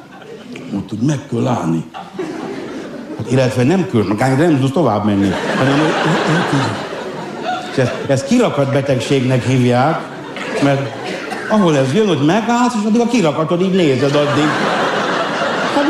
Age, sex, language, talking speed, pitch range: 60-79, male, Hungarian, 115 wpm, 130-185 Hz